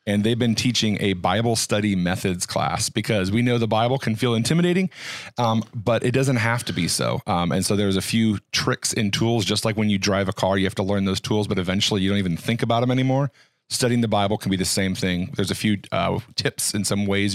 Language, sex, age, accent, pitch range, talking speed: English, male, 40-59, American, 100-120 Hz, 250 wpm